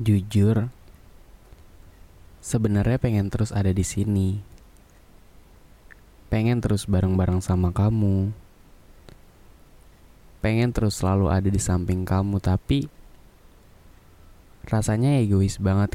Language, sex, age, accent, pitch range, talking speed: Indonesian, male, 20-39, native, 90-105 Hz, 85 wpm